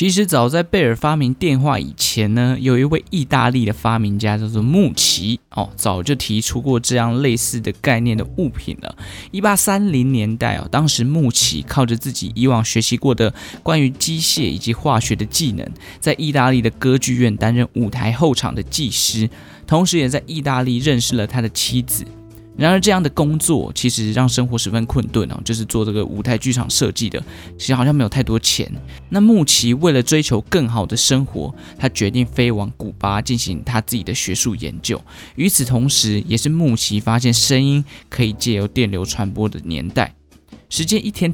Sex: male